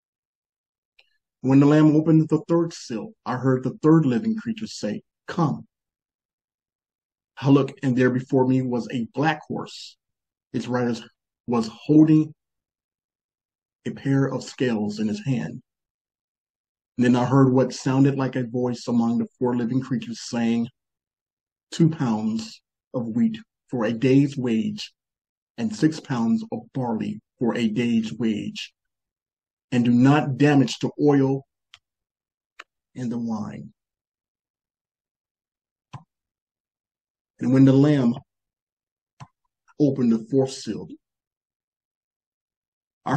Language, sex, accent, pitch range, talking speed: English, male, American, 120-145 Hz, 120 wpm